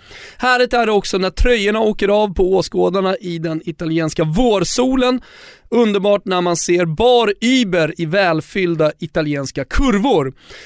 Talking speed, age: 130 wpm, 30-49